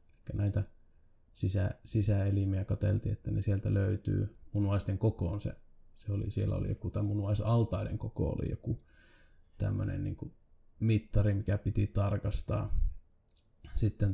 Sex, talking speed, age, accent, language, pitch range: male, 125 wpm, 20-39, native, Finnish, 95-105 Hz